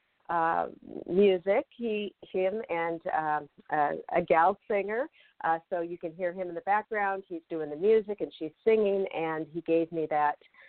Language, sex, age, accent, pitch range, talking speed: English, female, 50-69, American, 160-205 Hz, 175 wpm